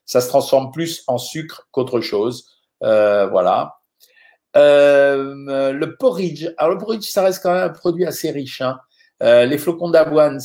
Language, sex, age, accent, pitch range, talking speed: French, male, 50-69, French, 130-165 Hz, 165 wpm